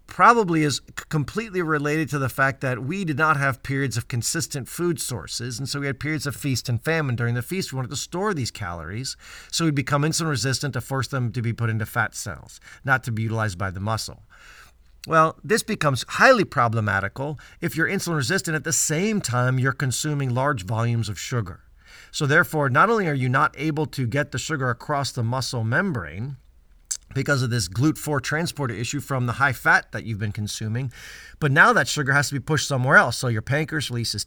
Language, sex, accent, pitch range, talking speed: English, male, American, 120-155 Hz, 210 wpm